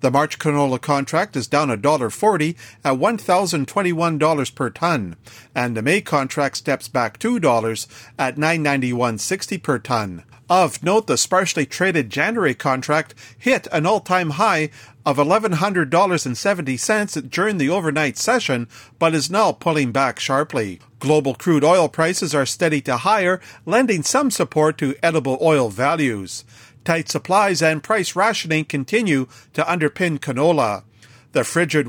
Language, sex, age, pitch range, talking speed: English, male, 50-69, 130-180 Hz, 140 wpm